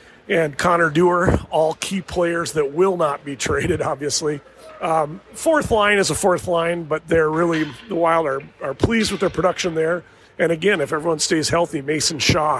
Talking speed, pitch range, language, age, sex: 185 wpm, 155-200 Hz, English, 40-59, male